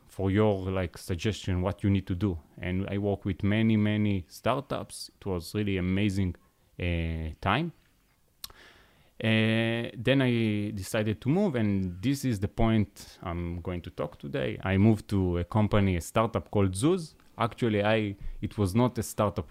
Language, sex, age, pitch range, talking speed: English, male, 30-49, 95-115 Hz, 165 wpm